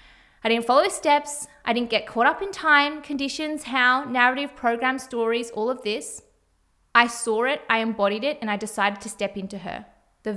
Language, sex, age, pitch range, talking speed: English, female, 20-39, 220-290 Hz, 190 wpm